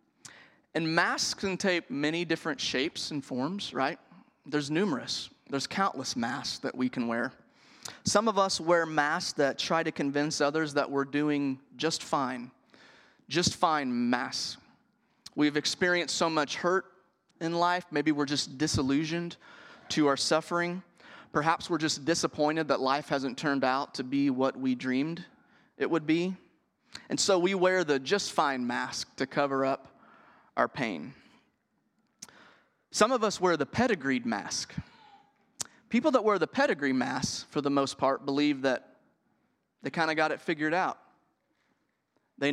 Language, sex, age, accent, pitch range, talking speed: English, male, 30-49, American, 140-180 Hz, 150 wpm